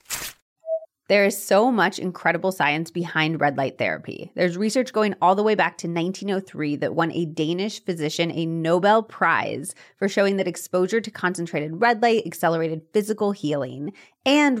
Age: 30-49